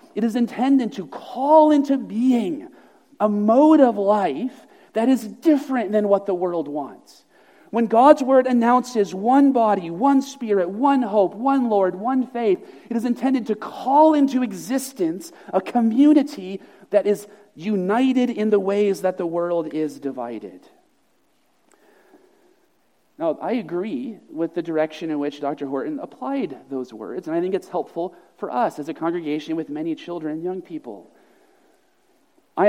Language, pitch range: English, 175-290 Hz